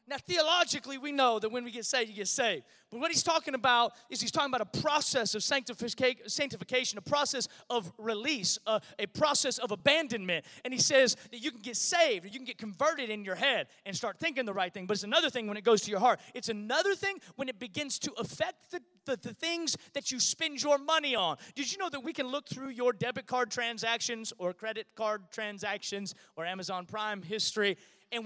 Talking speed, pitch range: 225 wpm, 220-300 Hz